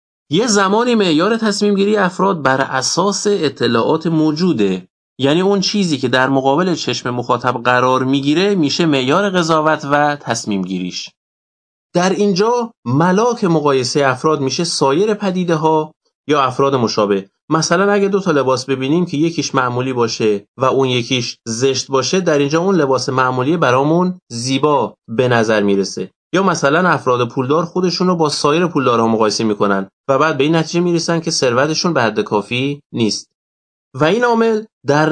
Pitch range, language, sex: 125-175 Hz, Persian, male